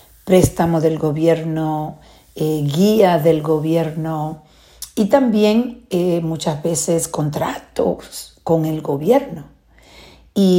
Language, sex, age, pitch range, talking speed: Spanish, female, 50-69, 155-180 Hz, 95 wpm